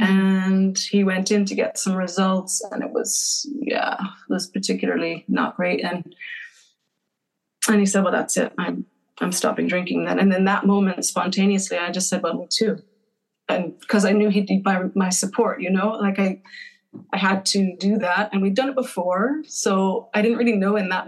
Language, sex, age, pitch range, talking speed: English, female, 30-49, 180-215 Hz, 200 wpm